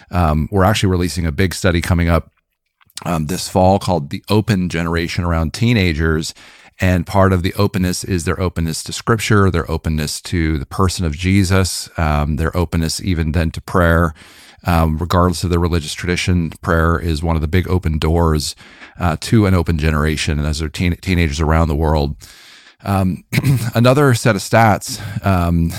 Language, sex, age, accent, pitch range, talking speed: English, male, 40-59, American, 80-95 Hz, 175 wpm